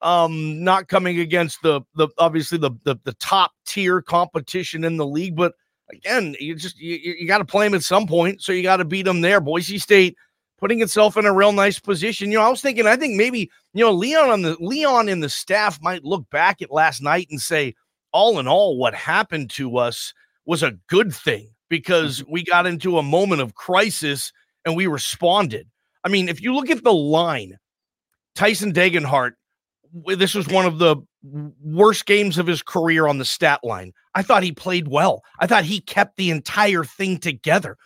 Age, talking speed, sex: 40-59, 205 wpm, male